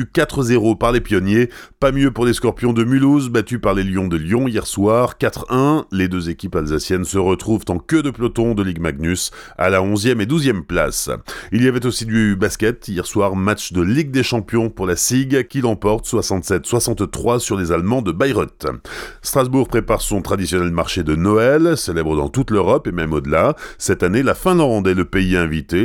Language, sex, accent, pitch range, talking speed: French, male, French, 90-125 Hz, 195 wpm